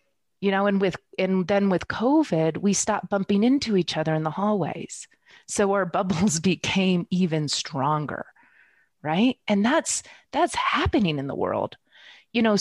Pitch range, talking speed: 190-275 Hz, 155 wpm